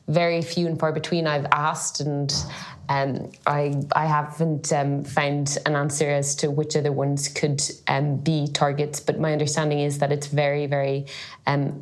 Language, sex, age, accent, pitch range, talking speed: English, female, 20-39, Irish, 145-170 Hz, 175 wpm